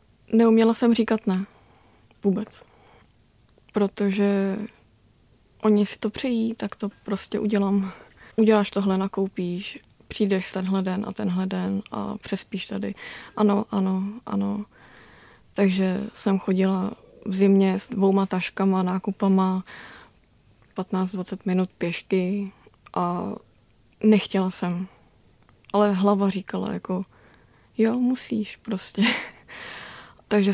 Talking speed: 100 wpm